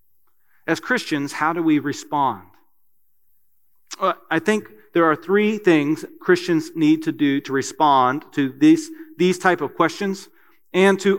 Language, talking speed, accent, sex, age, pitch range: English, 140 wpm, American, male, 40-59, 150-205 Hz